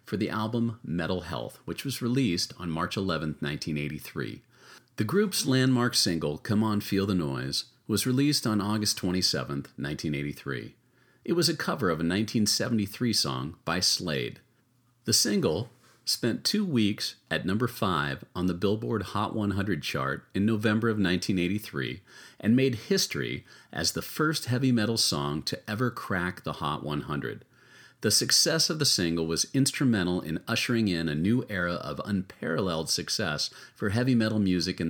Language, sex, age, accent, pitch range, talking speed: English, male, 40-59, American, 85-120 Hz, 155 wpm